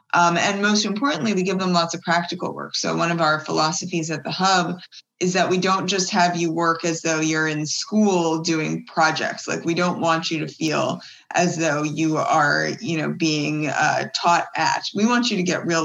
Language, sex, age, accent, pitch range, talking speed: English, female, 20-39, American, 155-180 Hz, 215 wpm